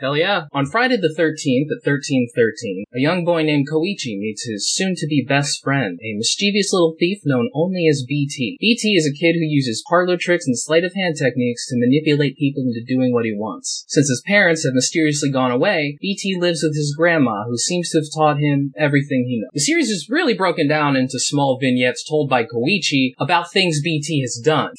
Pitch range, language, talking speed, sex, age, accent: 150-230 Hz, English, 200 wpm, male, 20-39, American